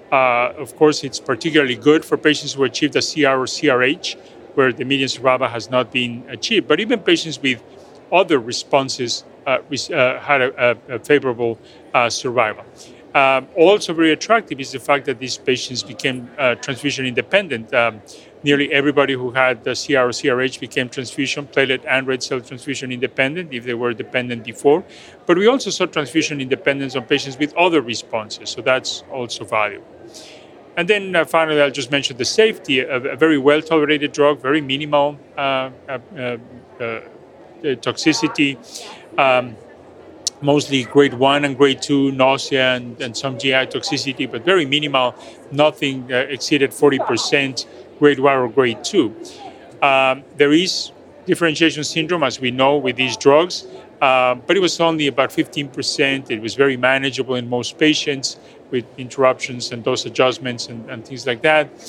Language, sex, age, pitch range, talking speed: English, male, 40-59, 130-150 Hz, 165 wpm